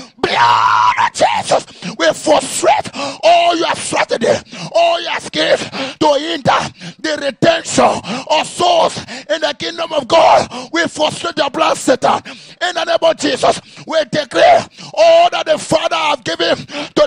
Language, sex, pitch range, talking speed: English, male, 255-325 Hz, 135 wpm